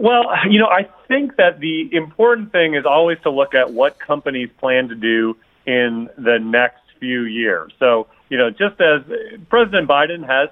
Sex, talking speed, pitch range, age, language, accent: male, 185 wpm, 115-150 Hz, 40-59, English, American